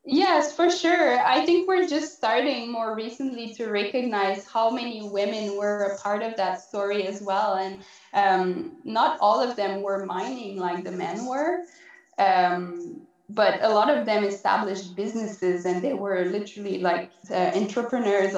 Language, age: English, 20-39